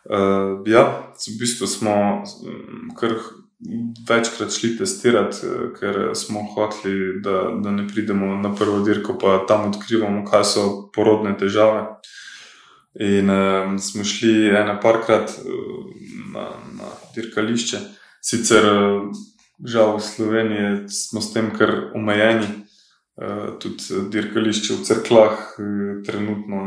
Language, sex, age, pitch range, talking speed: English, male, 20-39, 100-110 Hz, 110 wpm